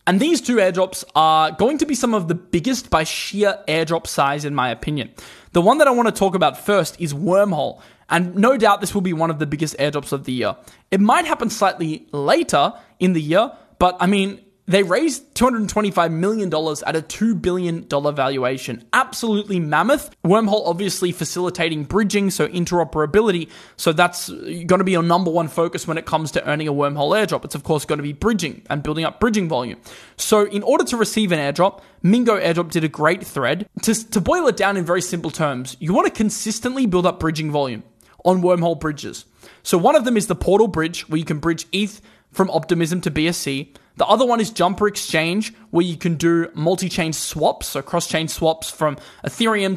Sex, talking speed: male, 200 wpm